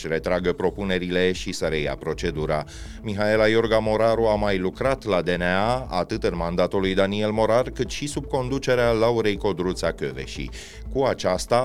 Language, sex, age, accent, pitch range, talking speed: Romanian, male, 30-49, native, 95-120 Hz, 150 wpm